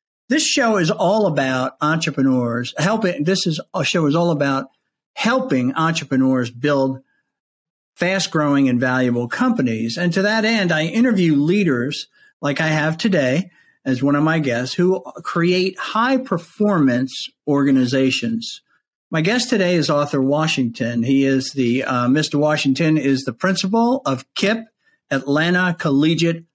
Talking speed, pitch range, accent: 140 wpm, 135-190 Hz, American